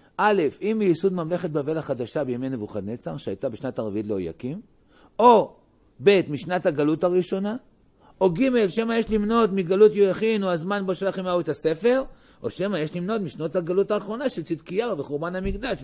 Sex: male